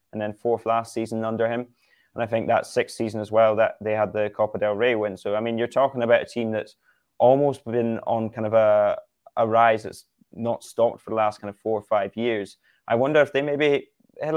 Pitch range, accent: 110-125 Hz, British